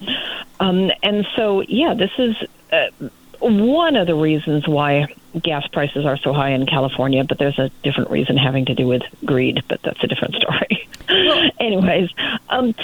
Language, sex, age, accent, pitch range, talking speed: English, female, 40-59, American, 150-205 Hz, 170 wpm